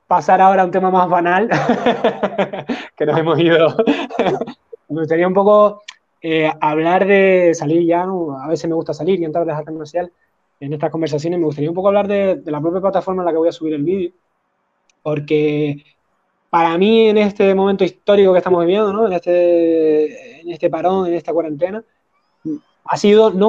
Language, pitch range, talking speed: Spanish, 155-195 Hz, 190 wpm